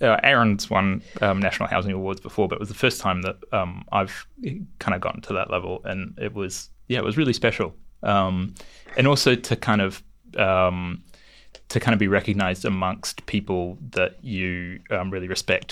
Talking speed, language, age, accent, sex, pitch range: 190 wpm, English, 20-39, Australian, male, 95-110 Hz